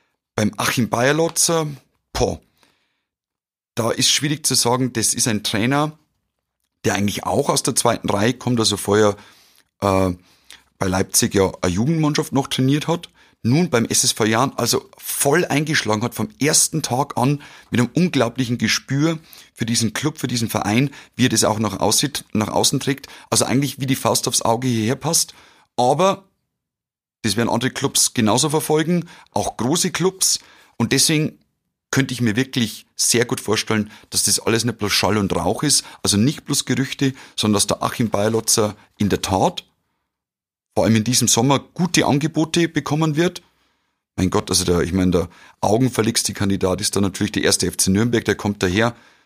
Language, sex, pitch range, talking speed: German, male, 105-140 Hz, 170 wpm